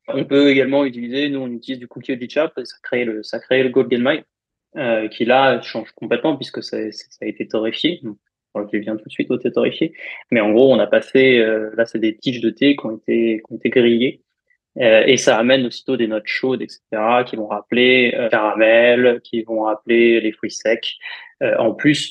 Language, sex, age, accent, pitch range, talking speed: French, male, 20-39, French, 115-135 Hz, 215 wpm